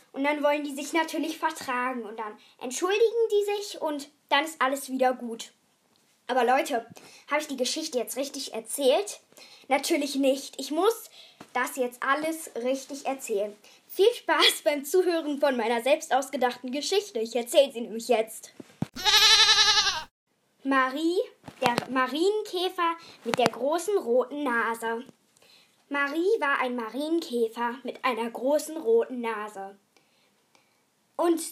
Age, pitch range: 10-29, 245-320 Hz